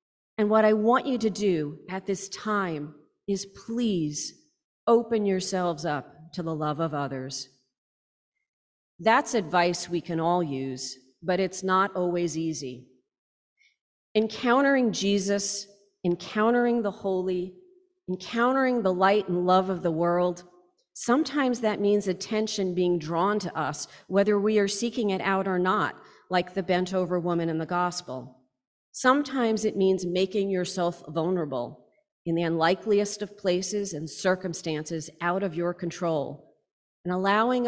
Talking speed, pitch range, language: 140 wpm, 165-210 Hz, English